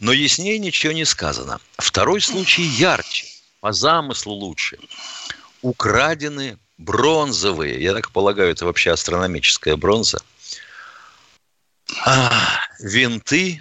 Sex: male